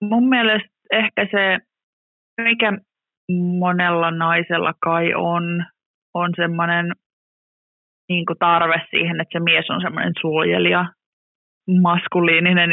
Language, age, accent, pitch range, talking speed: Finnish, 20-39, native, 170-200 Hz, 90 wpm